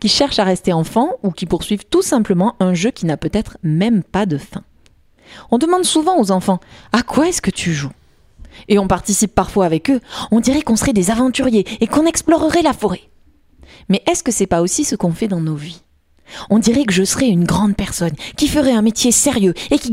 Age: 30-49